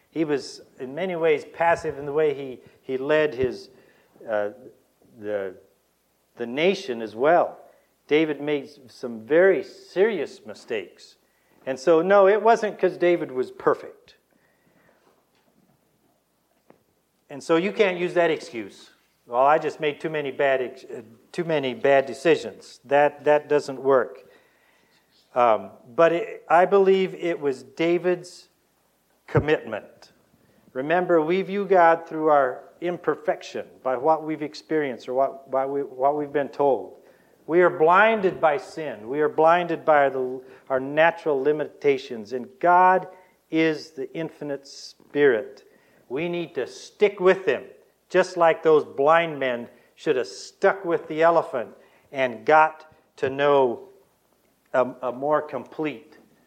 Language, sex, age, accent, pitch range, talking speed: English, male, 50-69, American, 140-190 Hz, 135 wpm